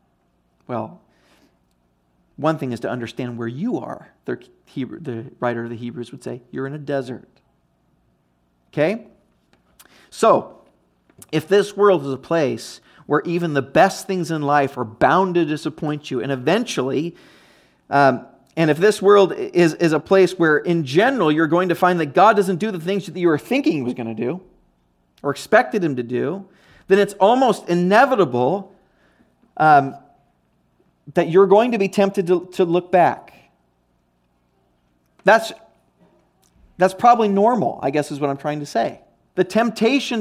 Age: 40-59